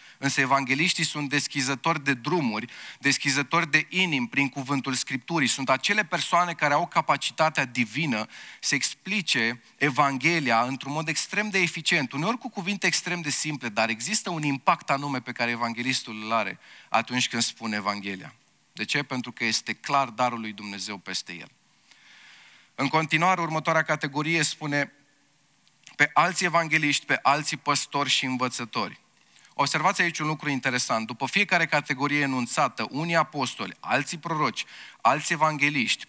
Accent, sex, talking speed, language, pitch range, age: native, male, 145 wpm, Romanian, 130-165 Hz, 30-49